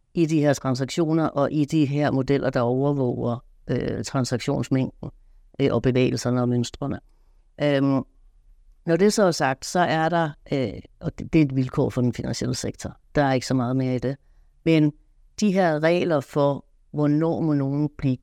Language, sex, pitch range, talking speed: Danish, female, 135-175 Hz, 180 wpm